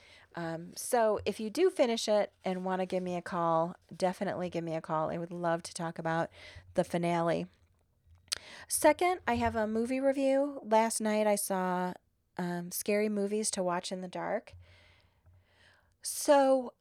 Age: 30-49